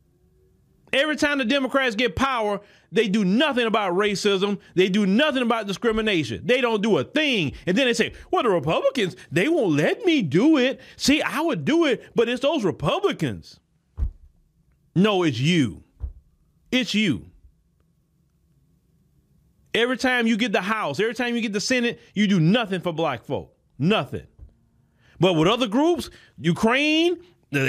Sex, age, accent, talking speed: male, 30-49, American, 160 wpm